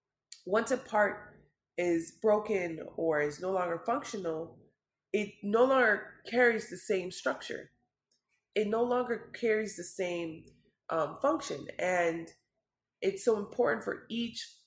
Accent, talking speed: American, 125 wpm